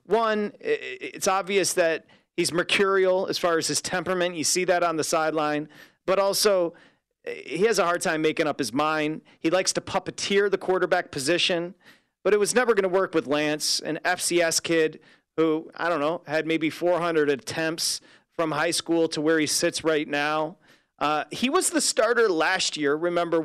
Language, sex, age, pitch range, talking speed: English, male, 40-59, 155-195 Hz, 185 wpm